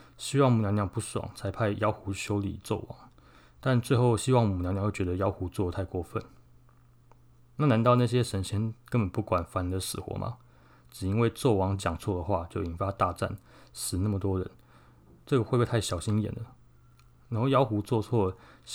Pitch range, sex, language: 95-120 Hz, male, Chinese